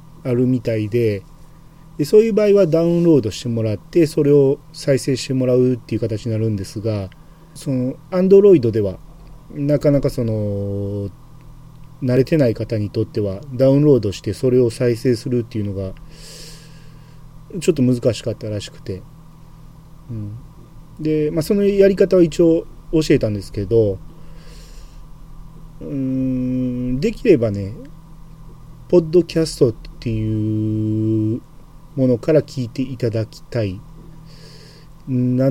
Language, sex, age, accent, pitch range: Japanese, male, 40-59, native, 110-155 Hz